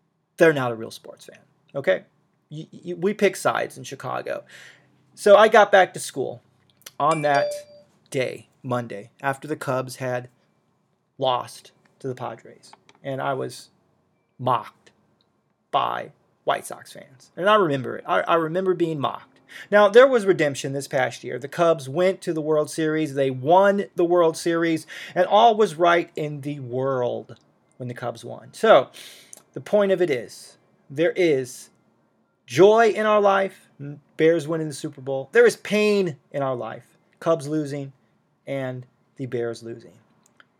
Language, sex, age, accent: English, male, 30-49, American